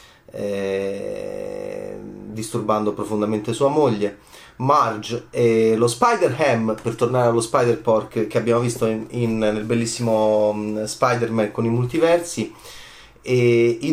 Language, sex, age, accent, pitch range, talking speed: Italian, male, 30-49, native, 120-180 Hz, 110 wpm